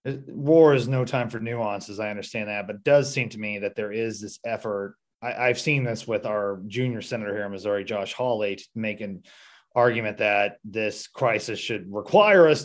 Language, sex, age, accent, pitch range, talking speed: English, male, 30-49, American, 110-150 Hz, 205 wpm